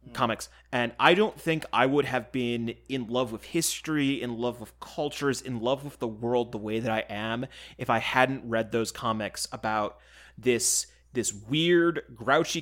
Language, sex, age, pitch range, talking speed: English, male, 30-49, 115-135 Hz, 180 wpm